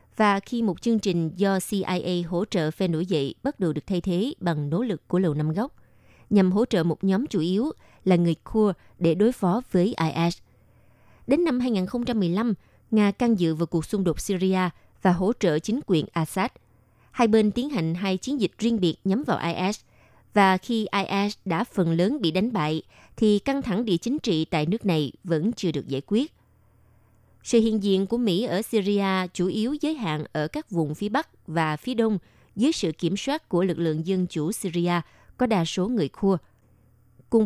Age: 20-39